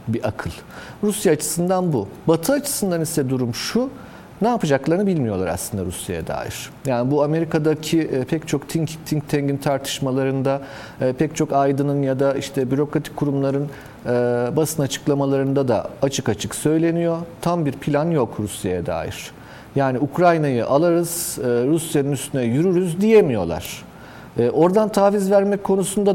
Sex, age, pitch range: male, 40-59, 120-165 Hz